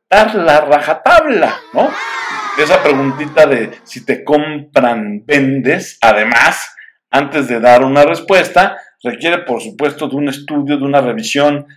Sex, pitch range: male, 120-180 Hz